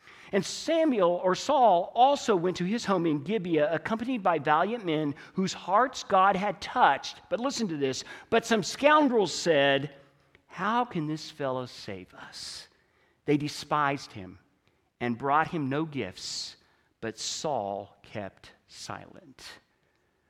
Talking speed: 135 wpm